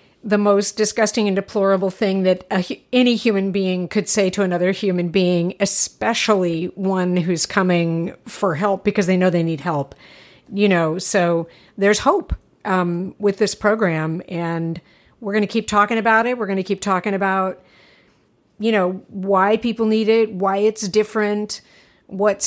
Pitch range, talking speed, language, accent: 175-205 Hz, 165 wpm, English, American